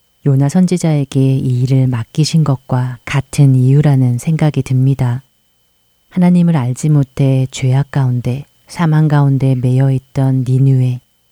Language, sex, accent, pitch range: Korean, female, native, 130-150 Hz